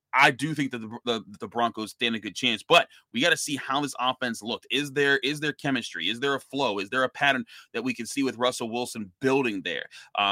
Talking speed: 255 wpm